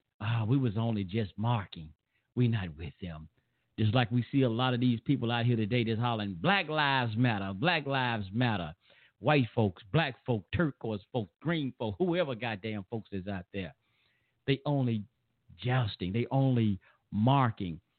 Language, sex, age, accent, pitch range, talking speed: English, male, 50-69, American, 105-135 Hz, 170 wpm